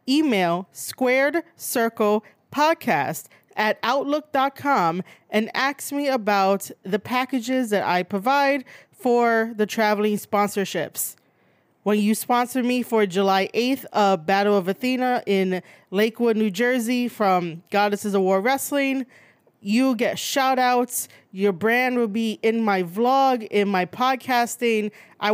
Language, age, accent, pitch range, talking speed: English, 30-49, American, 200-250 Hz, 120 wpm